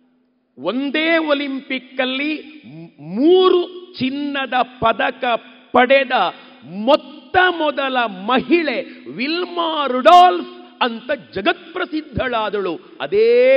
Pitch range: 240-300 Hz